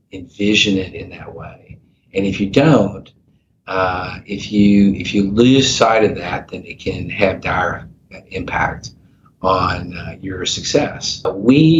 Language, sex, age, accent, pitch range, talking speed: English, male, 50-69, American, 95-110 Hz, 145 wpm